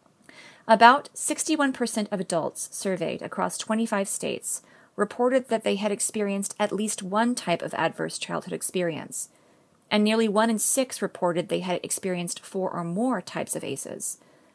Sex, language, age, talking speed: female, English, 30-49, 150 wpm